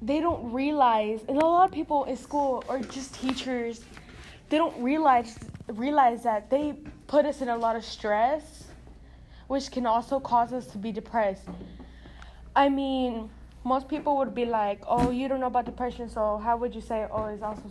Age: 10-29